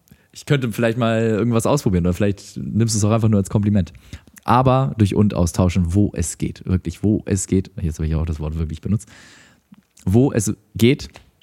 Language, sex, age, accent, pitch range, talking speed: German, male, 20-39, German, 95-120 Hz, 200 wpm